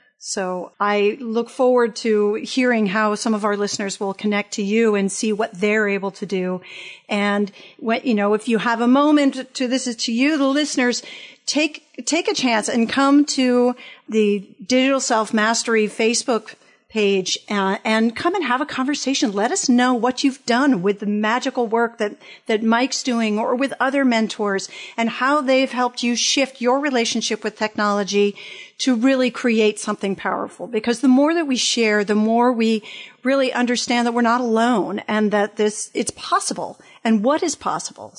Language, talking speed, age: English, 180 wpm, 40-59